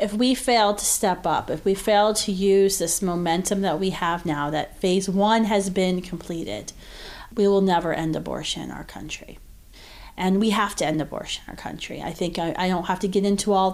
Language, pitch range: English, 170-205 Hz